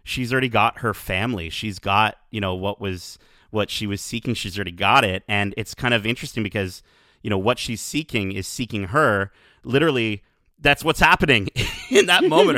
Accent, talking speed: American, 190 wpm